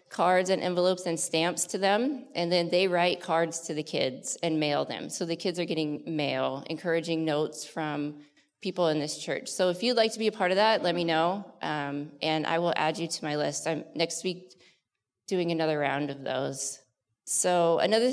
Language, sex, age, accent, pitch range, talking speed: English, female, 20-39, American, 155-190 Hz, 210 wpm